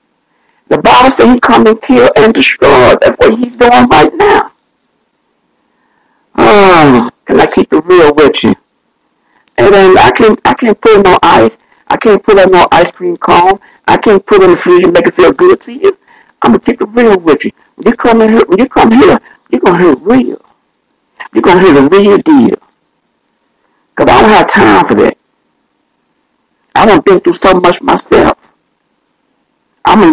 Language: English